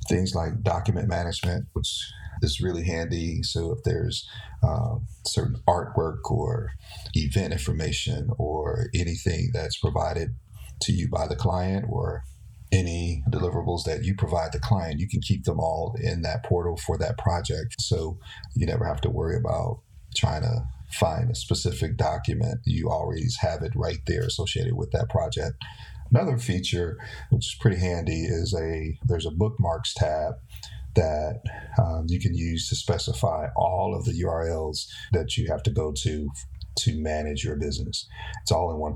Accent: American